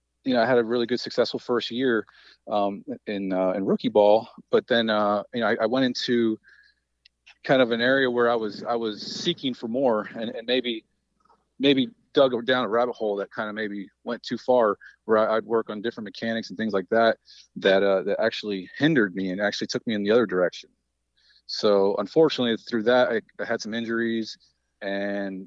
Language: English